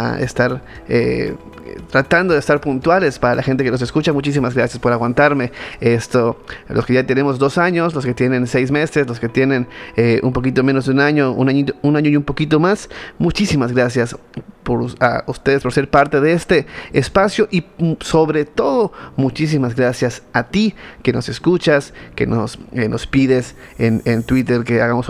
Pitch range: 120-145 Hz